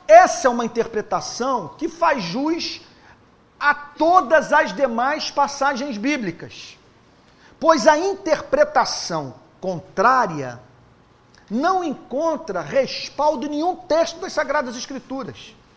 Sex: male